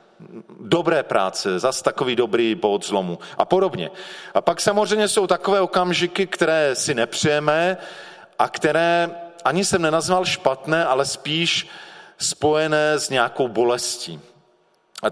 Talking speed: 125 wpm